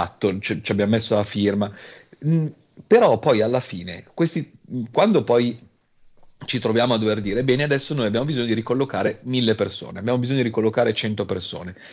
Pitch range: 100-125 Hz